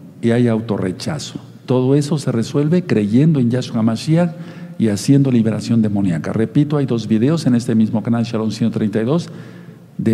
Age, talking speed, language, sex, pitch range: 50-69, 155 wpm, Spanish, male, 110-145 Hz